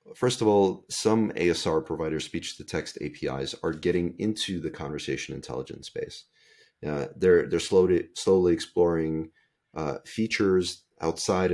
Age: 30-49